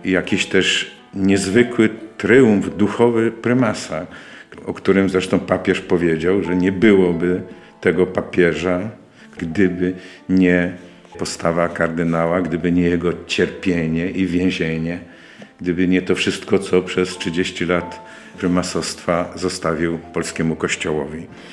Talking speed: 105 wpm